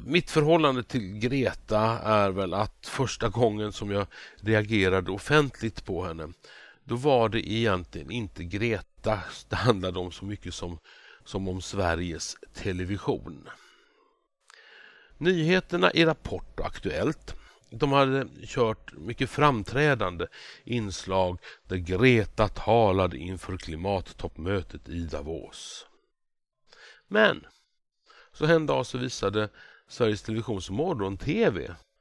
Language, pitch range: Swedish, 95-125 Hz